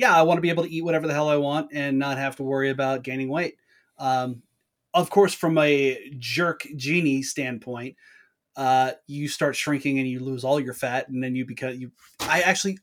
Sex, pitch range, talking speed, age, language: male, 130-160 Hz, 215 wpm, 30-49, English